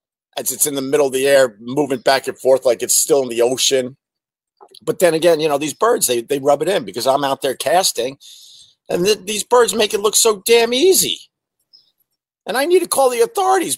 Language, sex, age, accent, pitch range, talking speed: English, male, 50-69, American, 135-215 Hz, 225 wpm